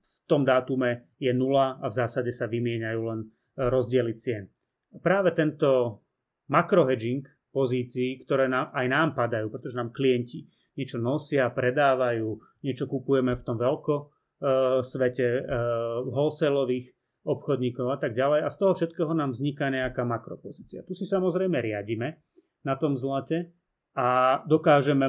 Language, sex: Czech, male